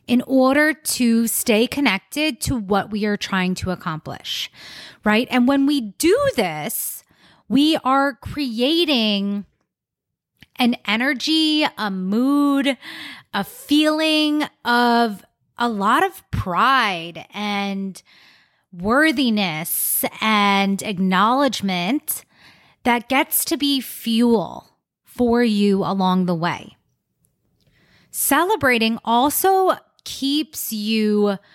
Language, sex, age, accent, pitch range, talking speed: English, female, 20-39, American, 210-300 Hz, 95 wpm